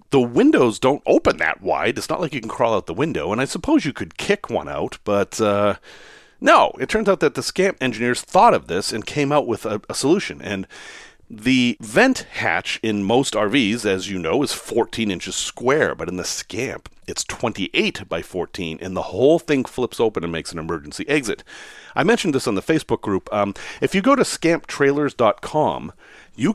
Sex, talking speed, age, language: male, 205 wpm, 40-59, English